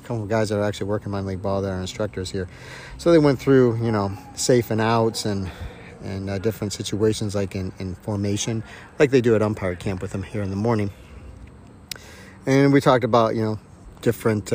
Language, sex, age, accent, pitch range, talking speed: English, male, 40-59, American, 95-115 Hz, 205 wpm